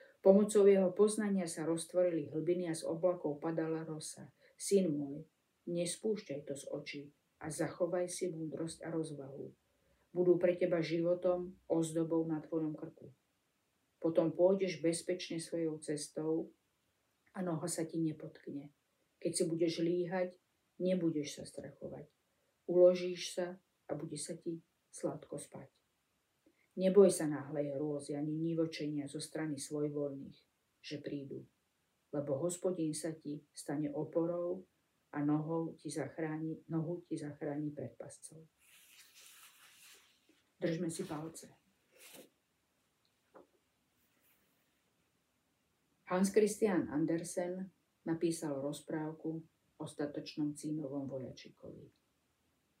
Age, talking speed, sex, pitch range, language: 50-69, 105 wpm, female, 150-175 Hz, Slovak